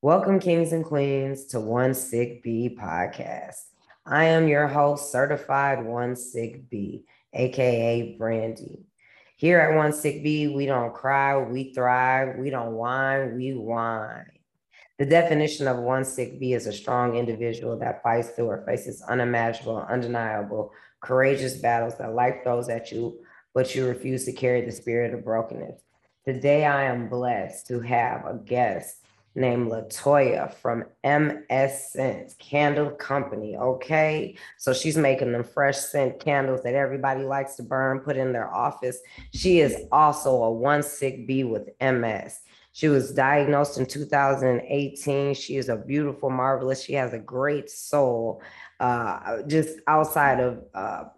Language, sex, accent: English, female, American